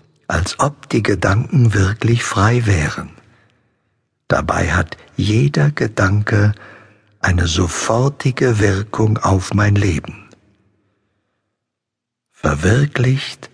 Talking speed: 80 wpm